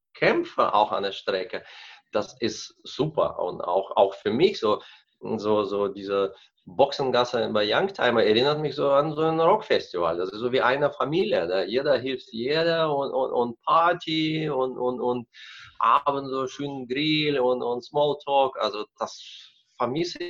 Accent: German